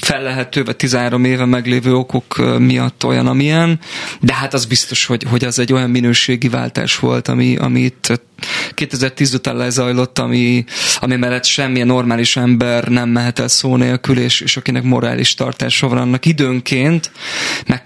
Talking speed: 150 wpm